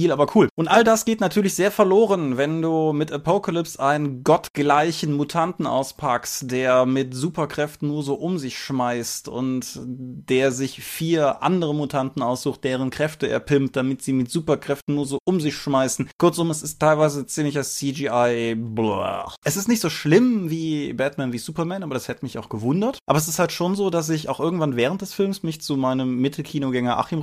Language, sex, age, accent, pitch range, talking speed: German, male, 20-39, German, 125-160 Hz, 185 wpm